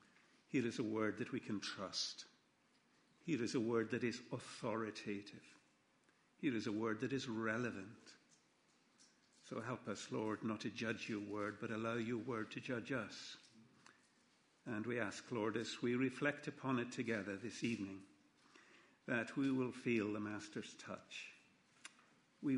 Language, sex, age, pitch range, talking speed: English, male, 50-69, 110-130 Hz, 155 wpm